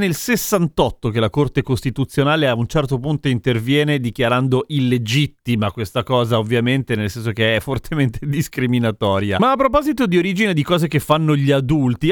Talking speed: 165 wpm